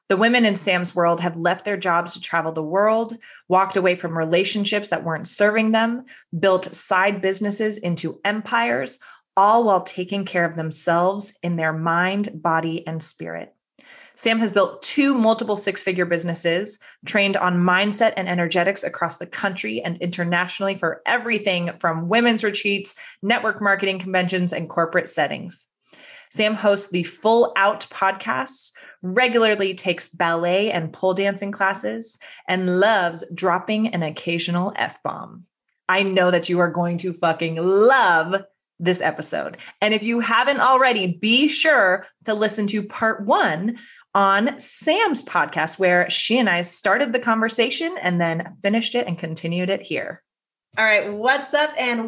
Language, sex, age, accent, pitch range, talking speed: English, female, 30-49, American, 175-220 Hz, 150 wpm